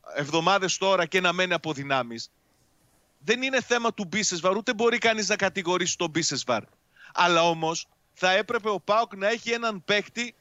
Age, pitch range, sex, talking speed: 30-49, 185-235 Hz, male, 165 wpm